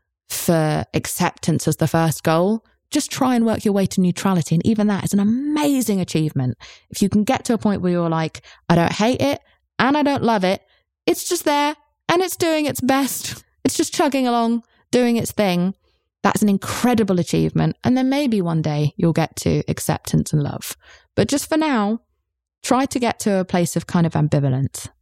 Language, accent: English, British